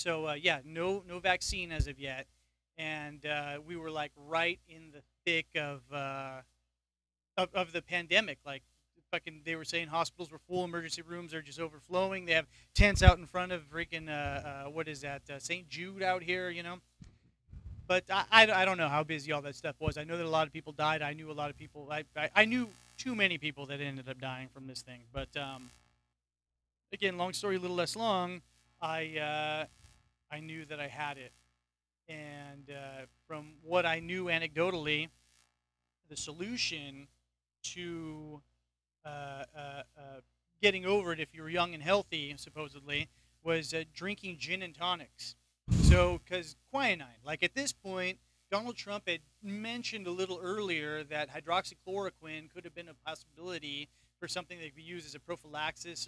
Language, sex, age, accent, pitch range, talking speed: English, male, 30-49, American, 140-175 Hz, 185 wpm